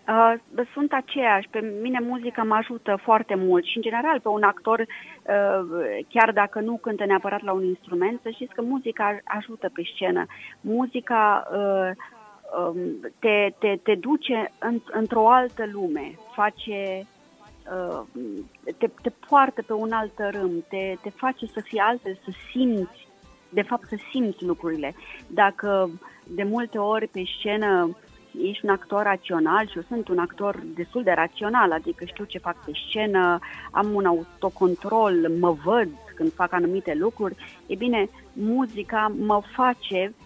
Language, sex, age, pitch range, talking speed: Romanian, female, 30-49, 190-225 Hz, 155 wpm